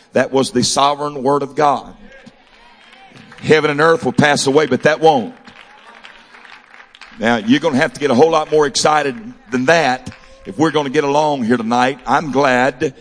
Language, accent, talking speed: English, American, 185 wpm